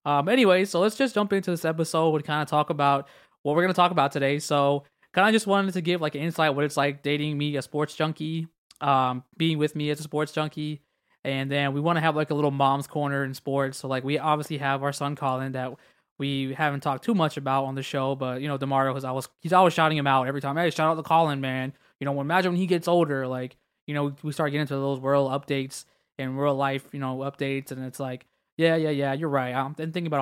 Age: 20-39